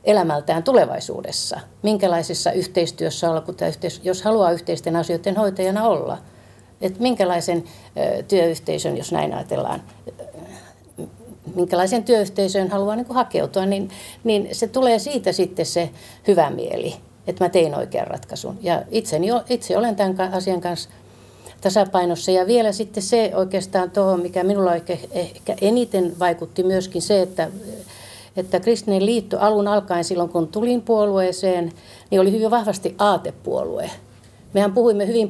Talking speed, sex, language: 130 wpm, female, Finnish